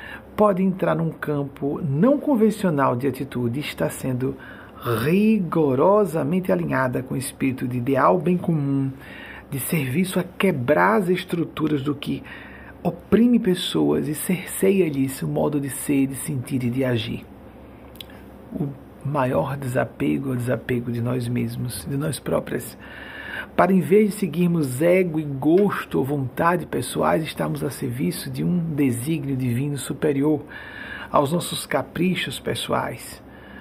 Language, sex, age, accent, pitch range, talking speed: Portuguese, male, 60-79, Brazilian, 135-185 Hz, 135 wpm